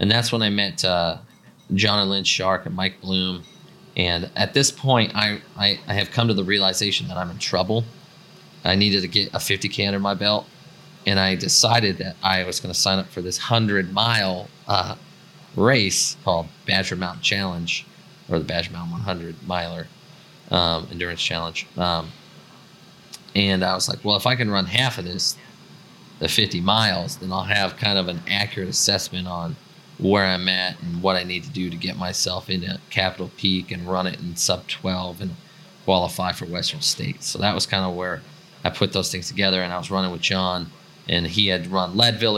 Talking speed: 195 wpm